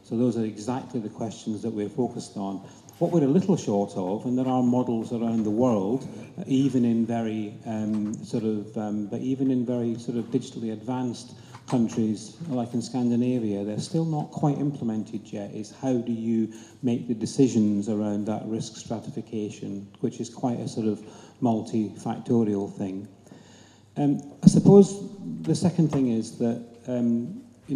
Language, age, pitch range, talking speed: English, 40-59, 110-125 Hz, 165 wpm